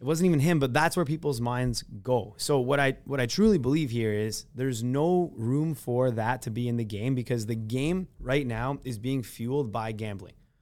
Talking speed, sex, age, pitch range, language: 220 wpm, male, 20-39, 115-145 Hz, English